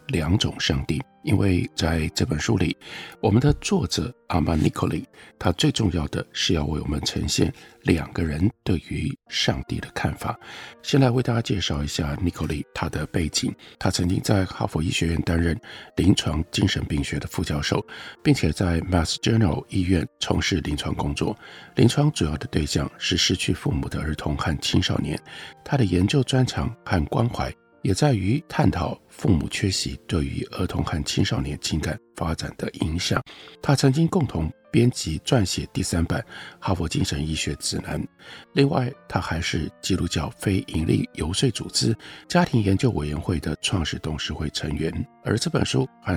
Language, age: Chinese, 50-69